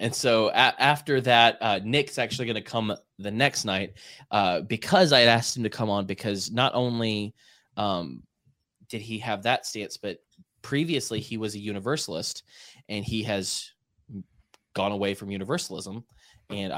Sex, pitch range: male, 100-120 Hz